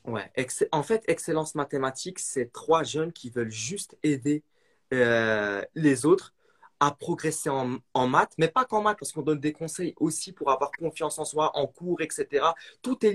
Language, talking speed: French, 185 wpm